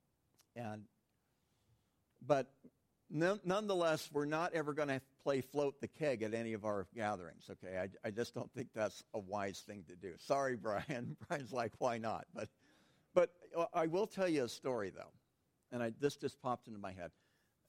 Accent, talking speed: American, 175 wpm